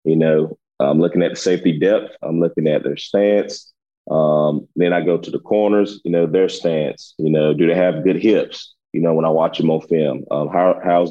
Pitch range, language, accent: 80-95 Hz, English, American